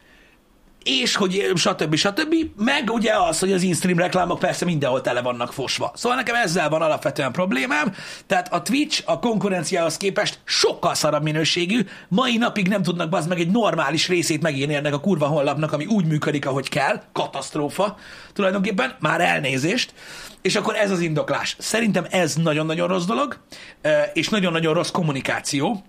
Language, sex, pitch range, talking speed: Hungarian, male, 145-195 Hz, 160 wpm